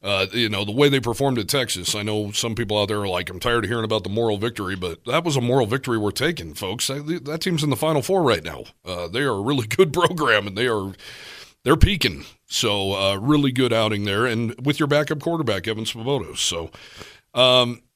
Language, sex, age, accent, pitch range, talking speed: English, male, 40-59, American, 105-135 Hz, 235 wpm